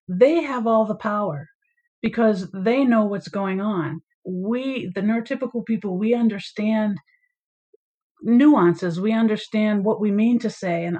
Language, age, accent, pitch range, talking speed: English, 50-69, American, 195-255 Hz, 140 wpm